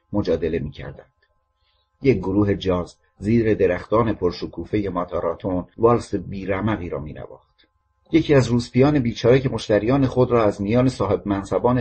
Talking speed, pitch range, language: 130 wpm, 90-120 Hz, Persian